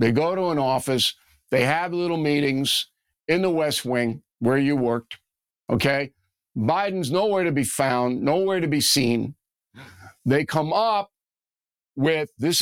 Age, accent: 50-69, American